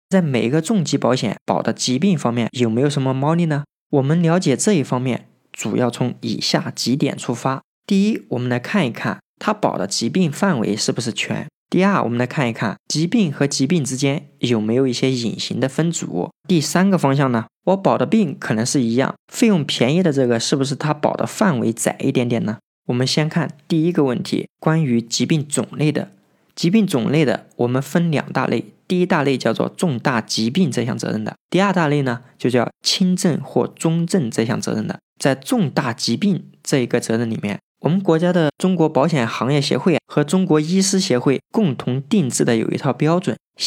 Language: Chinese